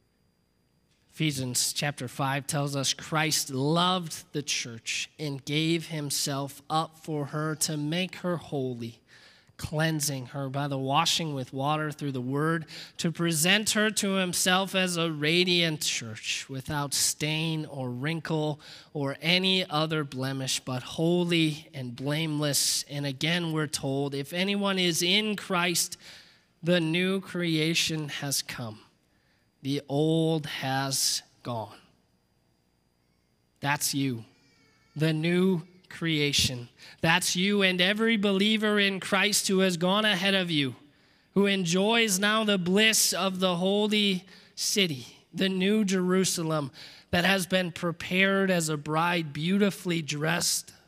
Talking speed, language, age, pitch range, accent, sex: 125 wpm, English, 20-39, 140-180 Hz, American, male